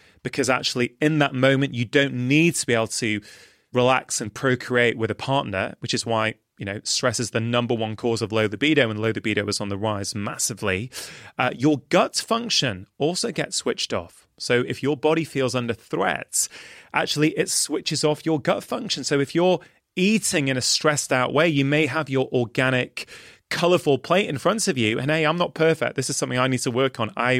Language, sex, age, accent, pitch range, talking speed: English, male, 30-49, British, 115-150 Hz, 210 wpm